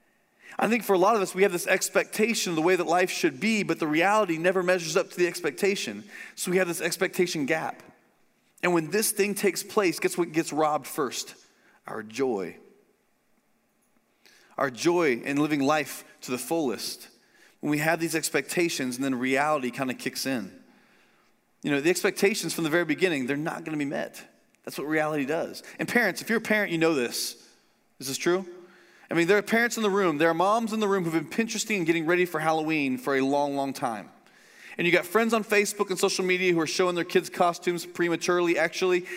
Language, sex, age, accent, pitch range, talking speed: English, male, 30-49, American, 160-195 Hz, 215 wpm